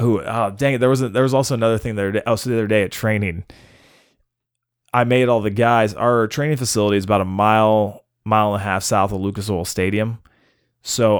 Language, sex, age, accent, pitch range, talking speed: English, male, 20-39, American, 100-120 Hz, 215 wpm